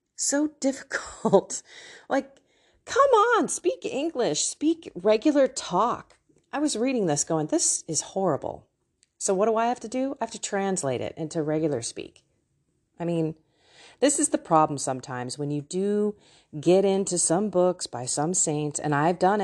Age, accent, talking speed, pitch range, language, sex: 30-49, American, 165 wpm, 145-220 Hz, English, female